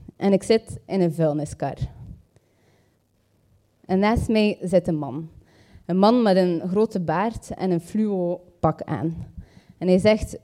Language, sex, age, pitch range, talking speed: Dutch, female, 20-39, 165-195 Hz, 145 wpm